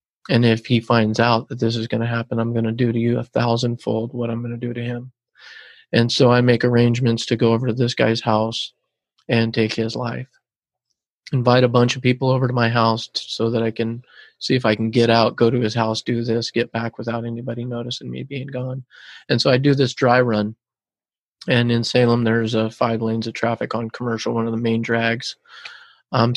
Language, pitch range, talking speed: English, 115-125 Hz, 225 wpm